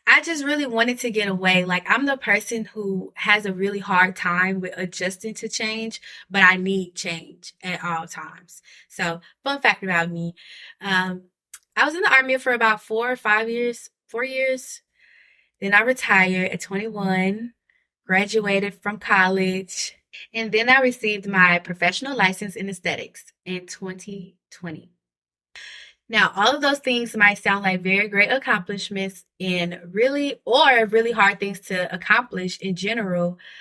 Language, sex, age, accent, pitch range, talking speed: English, female, 20-39, American, 185-225 Hz, 155 wpm